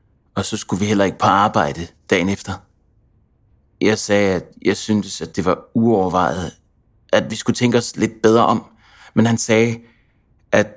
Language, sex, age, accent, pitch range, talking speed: Danish, male, 30-49, native, 95-115 Hz, 175 wpm